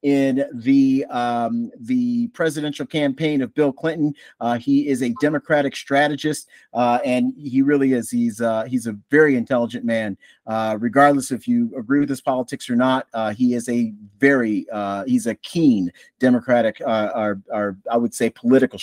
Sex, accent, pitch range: male, American, 115-155 Hz